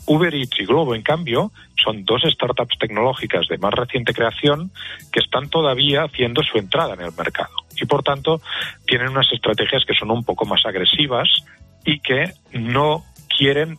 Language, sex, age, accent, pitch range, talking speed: Spanish, male, 40-59, Spanish, 100-145 Hz, 170 wpm